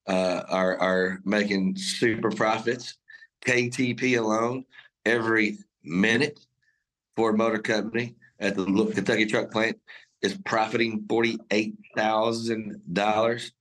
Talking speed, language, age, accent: 95 wpm, English, 30-49, American